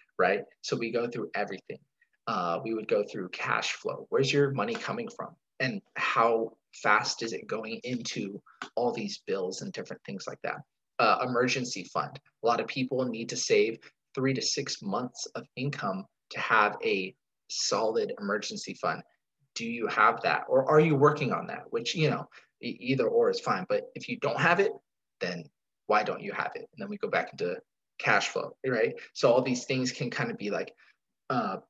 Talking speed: 195 wpm